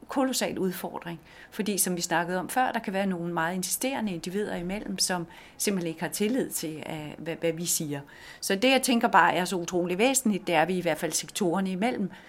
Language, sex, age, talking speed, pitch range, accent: Danish, female, 40-59, 210 wpm, 165-200 Hz, native